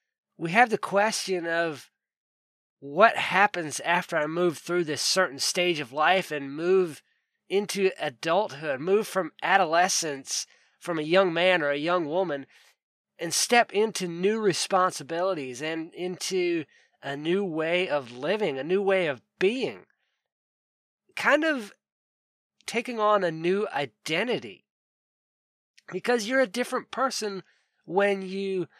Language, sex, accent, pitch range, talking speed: English, male, American, 150-195 Hz, 130 wpm